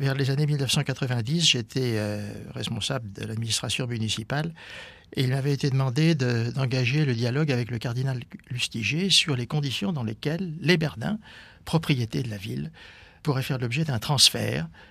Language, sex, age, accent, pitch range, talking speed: French, male, 60-79, French, 115-145 Hz, 150 wpm